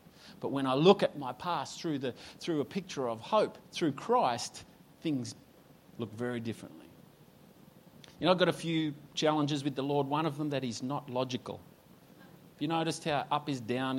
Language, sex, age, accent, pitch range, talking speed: English, male, 30-49, Australian, 125-160 Hz, 190 wpm